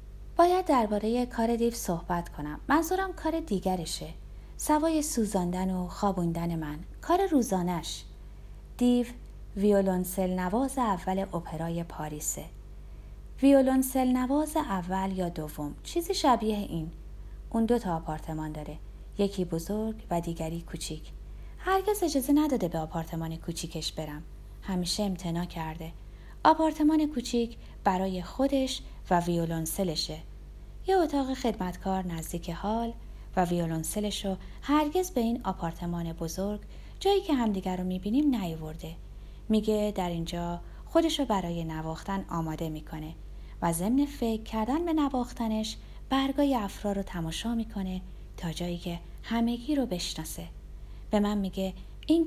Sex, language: female, Persian